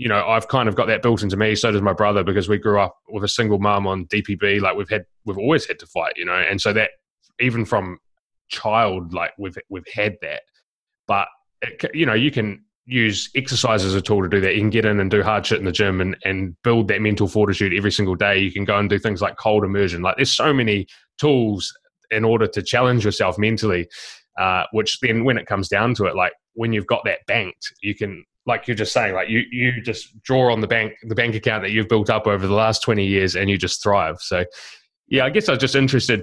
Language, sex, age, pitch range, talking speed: English, male, 20-39, 100-115 Hz, 250 wpm